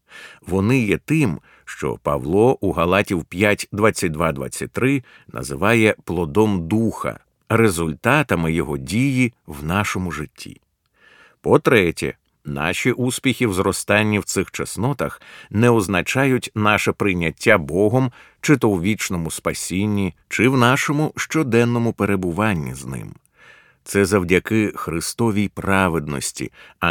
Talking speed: 105 wpm